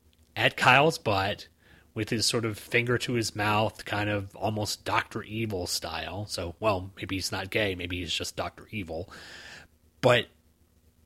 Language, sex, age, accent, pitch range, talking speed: English, male, 30-49, American, 85-115 Hz, 155 wpm